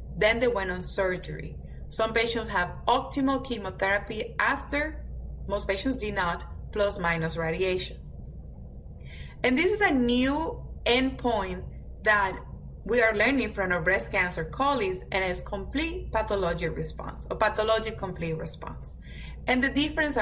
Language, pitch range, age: English, 180-240 Hz, 30-49